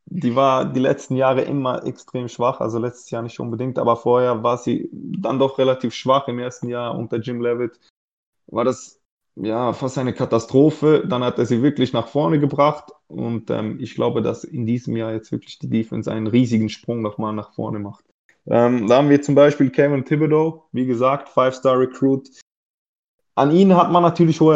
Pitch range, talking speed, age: 115-135 Hz, 190 wpm, 20-39